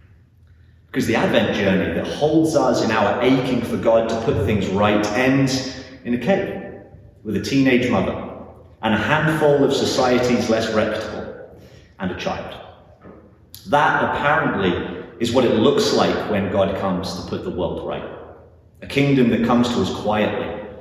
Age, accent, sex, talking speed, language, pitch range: 30-49, British, male, 160 wpm, English, 100-125 Hz